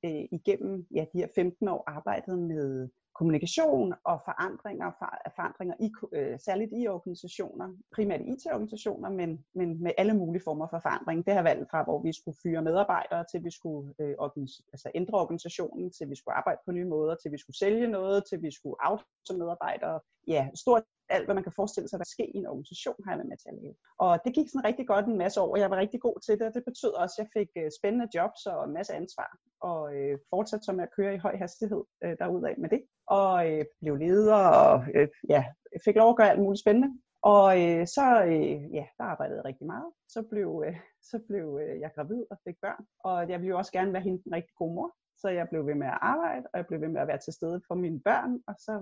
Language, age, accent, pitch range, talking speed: Danish, 30-49, native, 165-215 Hz, 235 wpm